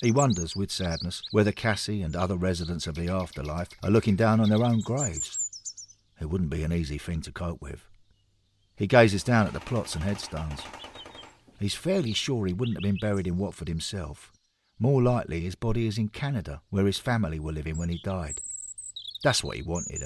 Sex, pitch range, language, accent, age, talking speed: male, 85-110 Hz, English, British, 50-69, 195 wpm